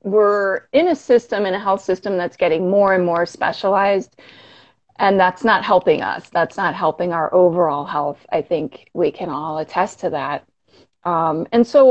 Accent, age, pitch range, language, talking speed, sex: American, 30-49, 185-245 Hz, English, 180 wpm, female